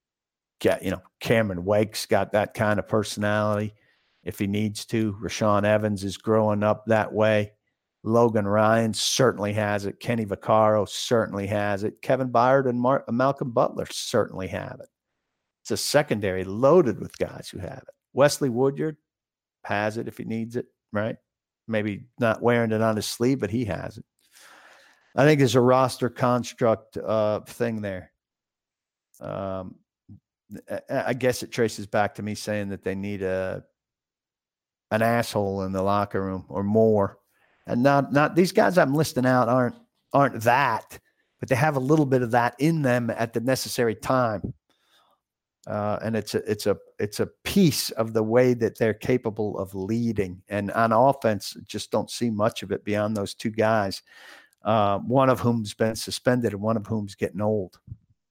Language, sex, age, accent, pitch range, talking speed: English, male, 50-69, American, 105-125 Hz, 170 wpm